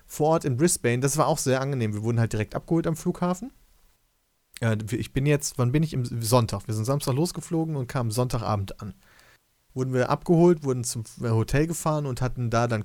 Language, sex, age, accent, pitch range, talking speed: German, male, 30-49, German, 110-145 Hz, 205 wpm